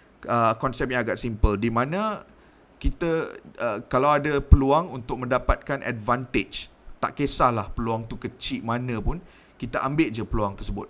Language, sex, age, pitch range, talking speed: Malay, male, 20-39, 115-135 Hz, 150 wpm